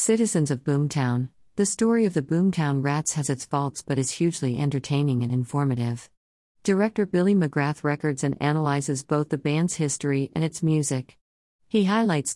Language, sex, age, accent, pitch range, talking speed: English, female, 50-69, American, 130-165 Hz, 160 wpm